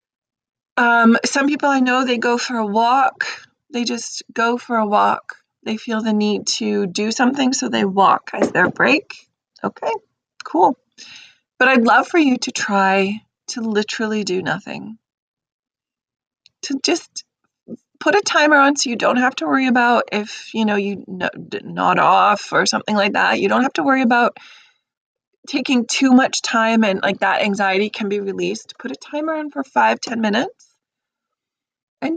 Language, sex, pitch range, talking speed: English, female, 210-275 Hz, 170 wpm